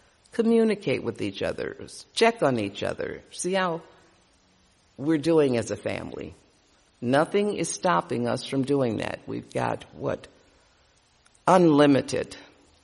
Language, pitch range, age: English, 100-165 Hz, 60-79